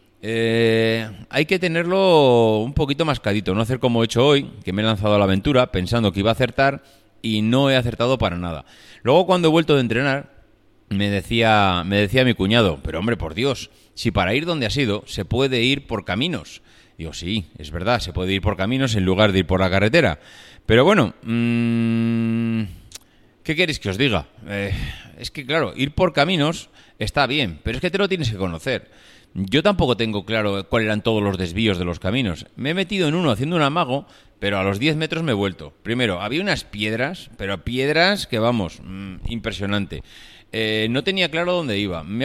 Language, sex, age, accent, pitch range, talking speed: Spanish, male, 30-49, Spanish, 95-135 Hz, 205 wpm